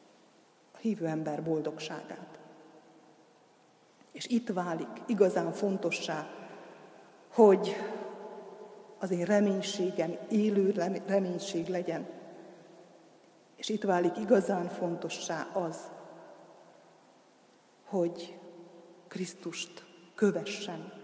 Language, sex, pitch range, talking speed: Hungarian, female, 185-215 Hz, 70 wpm